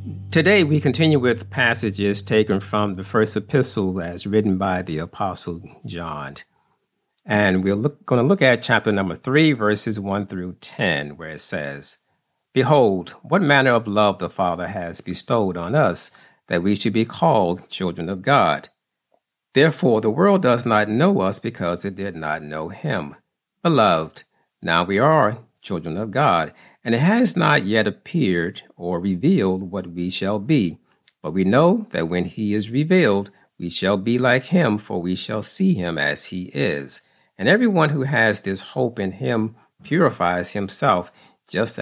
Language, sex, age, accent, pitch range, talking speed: English, male, 50-69, American, 95-140 Hz, 165 wpm